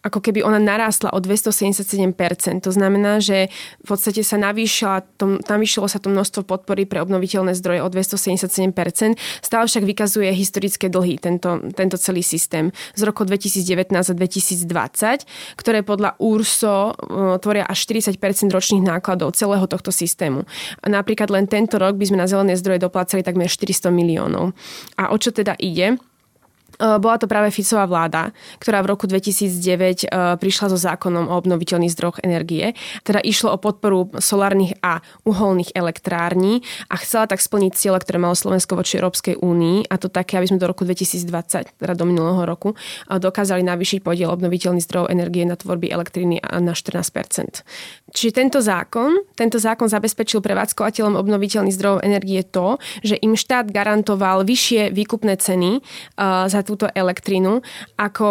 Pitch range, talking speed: 185-210 Hz, 150 wpm